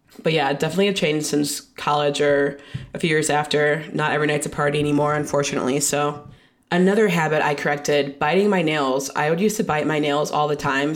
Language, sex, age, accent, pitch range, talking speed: English, female, 20-39, American, 145-175 Hz, 205 wpm